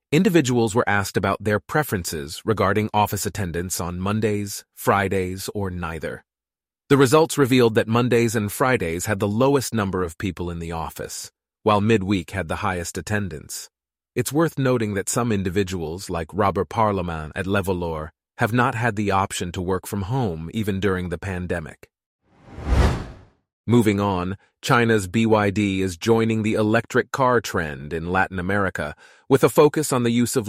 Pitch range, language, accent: 95-115 Hz, English, American